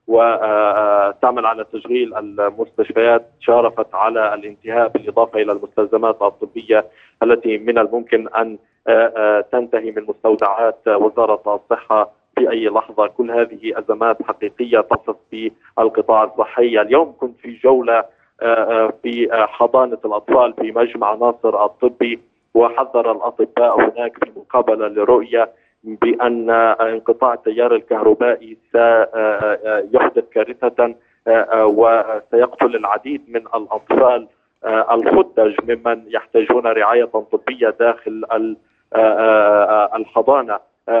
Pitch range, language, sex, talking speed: 110-120 Hz, Arabic, male, 95 wpm